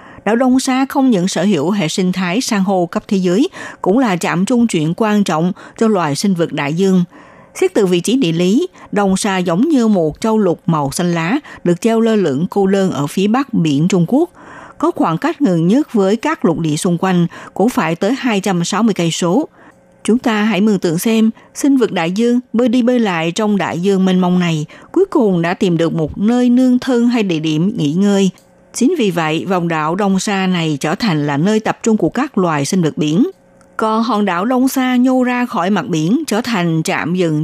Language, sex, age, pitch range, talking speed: Vietnamese, female, 60-79, 175-230 Hz, 225 wpm